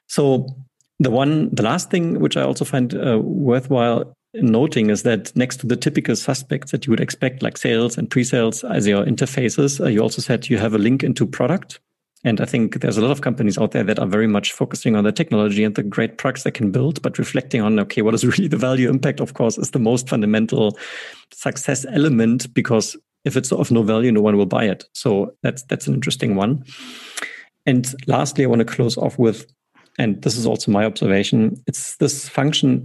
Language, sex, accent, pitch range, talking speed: German, male, German, 110-135 Hz, 215 wpm